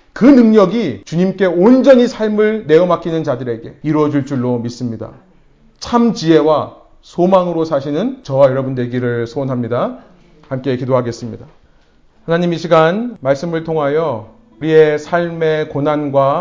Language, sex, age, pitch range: Korean, male, 40-59, 145-200 Hz